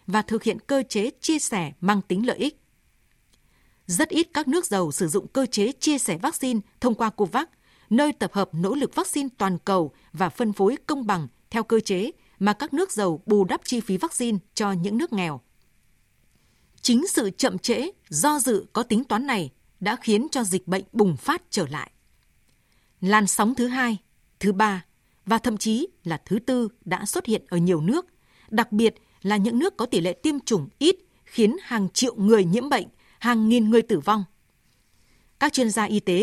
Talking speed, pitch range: 195 wpm, 190-250 Hz